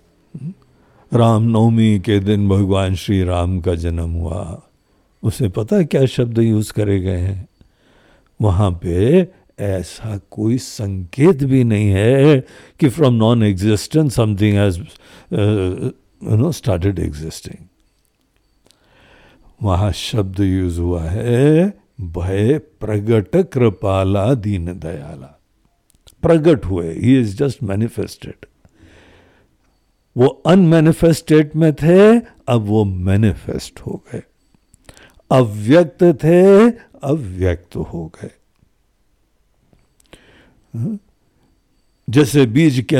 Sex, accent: male, native